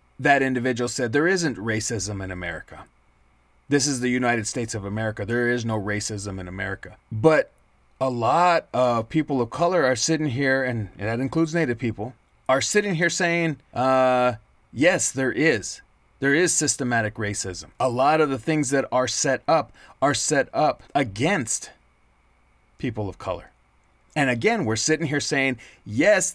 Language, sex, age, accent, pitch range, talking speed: English, male, 30-49, American, 110-150 Hz, 160 wpm